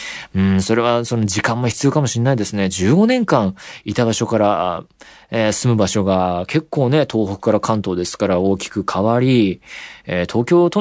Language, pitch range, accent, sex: Japanese, 95-135 Hz, native, male